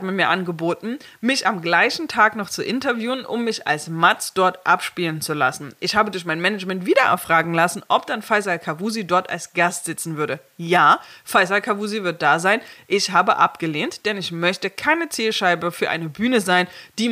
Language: German